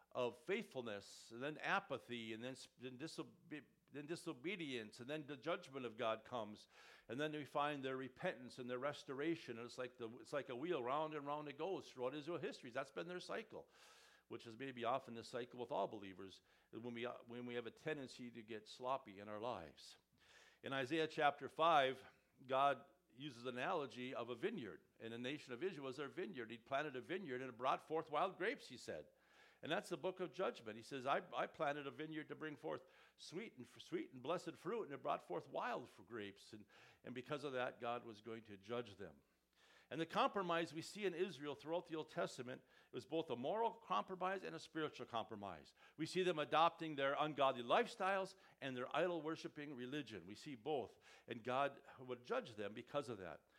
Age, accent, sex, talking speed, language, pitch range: 50-69, American, male, 205 wpm, English, 120-160 Hz